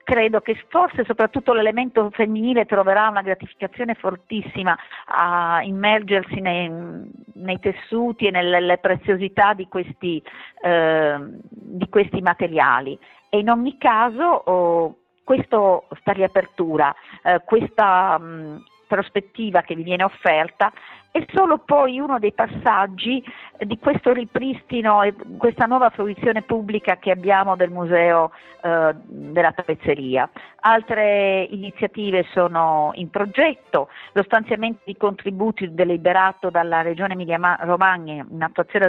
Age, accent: 40-59, native